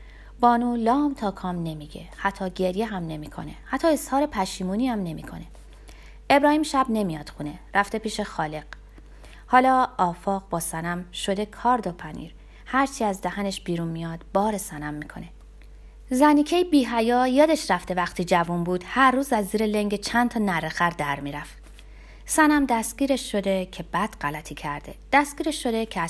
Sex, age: female, 30-49